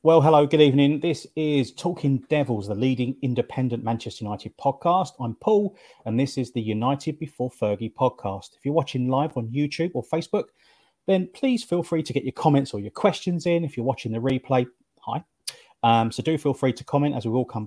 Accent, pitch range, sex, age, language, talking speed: British, 120-150 Hz, male, 30-49, English, 205 wpm